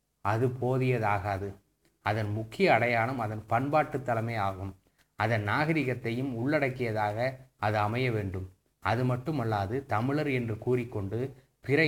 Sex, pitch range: male, 110-140 Hz